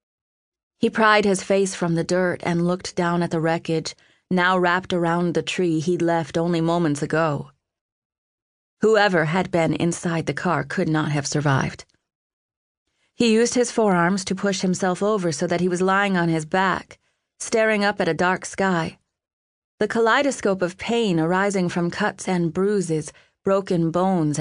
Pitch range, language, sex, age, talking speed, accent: 165-195 Hz, English, female, 30-49, 160 wpm, American